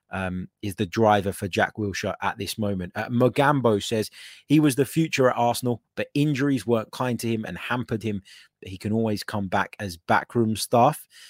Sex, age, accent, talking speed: male, 30-49, British, 190 wpm